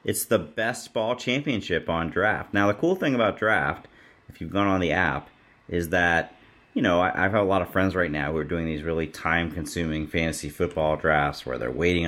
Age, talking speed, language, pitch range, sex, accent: 30-49, 215 wpm, English, 80-110 Hz, male, American